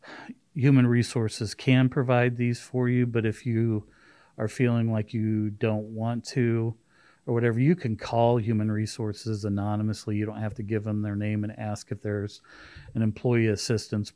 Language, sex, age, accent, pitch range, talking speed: English, male, 40-59, American, 105-120 Hz, 170 wpm